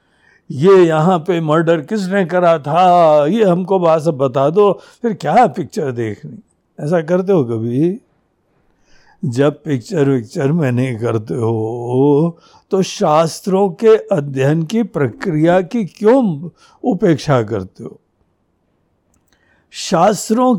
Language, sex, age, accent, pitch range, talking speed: Hindi, male, 60-79, native, 135-200 Hz, 115 wpm